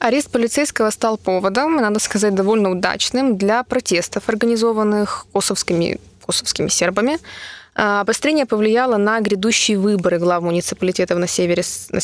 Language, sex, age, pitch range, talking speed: Russian, female, 20-39, 185-225 Hz, 115 wpm